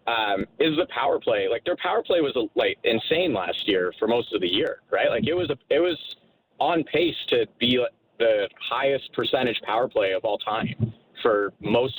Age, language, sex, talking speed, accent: 30-49, English, male, 205 wpm, American